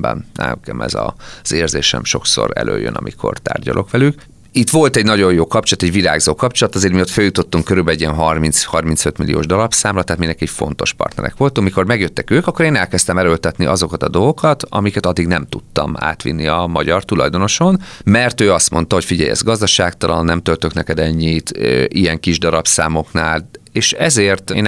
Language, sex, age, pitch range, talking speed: Hungarian, male, 30-49, 80-110 Hz, 170 wpm